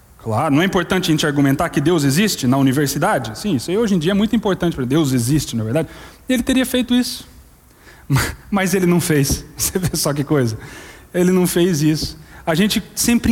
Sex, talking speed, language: male, 210 wpm, Portuguese